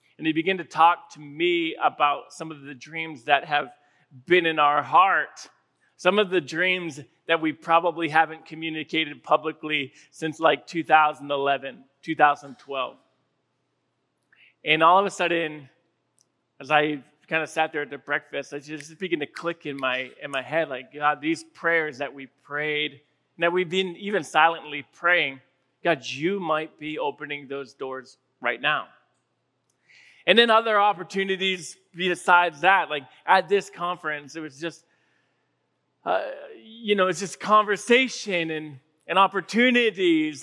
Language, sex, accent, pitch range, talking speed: English, male, American, 145-180 Hz, 145 wpm